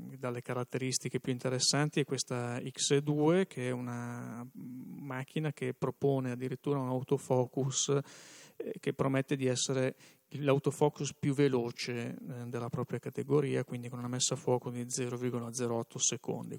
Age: 30-49